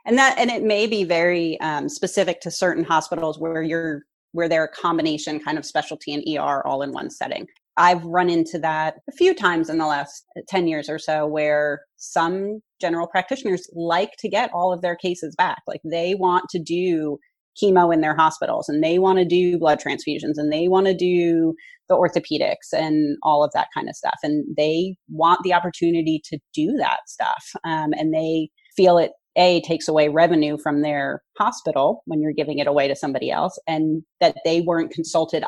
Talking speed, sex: 200 wpm, female